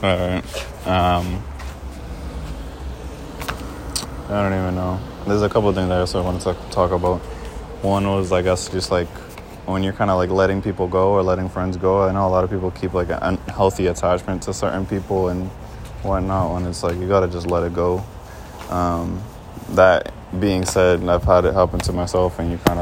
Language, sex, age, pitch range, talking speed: English, male, 20-39, 90-95 Hz, 195 wpm